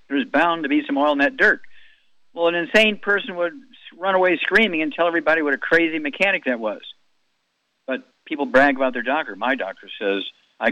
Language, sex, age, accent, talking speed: English, male, 60-79, American, 200 wpm